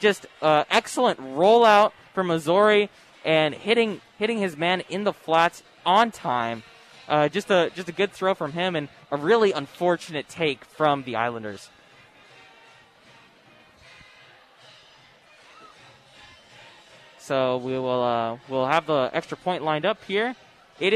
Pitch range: 140-195 Hz